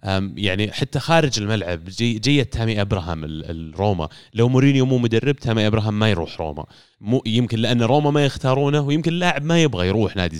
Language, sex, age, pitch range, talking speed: Arabic, male, 30-49, 95-125 Hz, 175 wpm